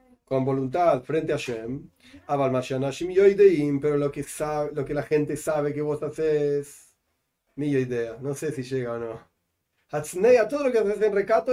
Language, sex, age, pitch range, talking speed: Spanish, male, 40-59, 135-180 Hz, 185 wpm